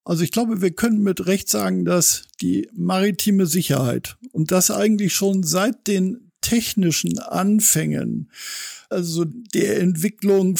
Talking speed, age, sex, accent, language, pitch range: 130 wpm, 60-79, male, German, German, 165-195 Hz